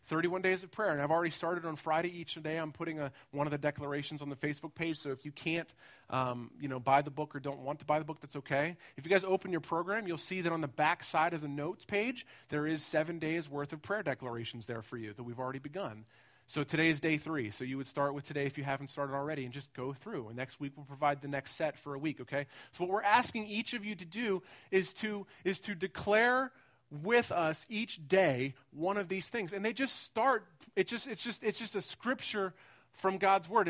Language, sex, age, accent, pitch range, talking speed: English, male, 30-49, American, 140-180 Hz, 255 wpm